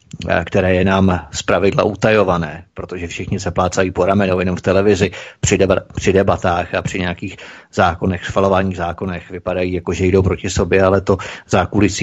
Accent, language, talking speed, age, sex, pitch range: native, Czech, 150 wpm, 30-49, male, 95-110 Hz